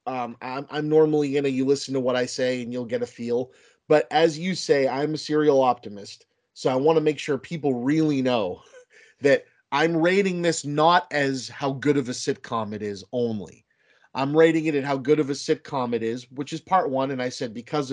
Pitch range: 130-165 Hz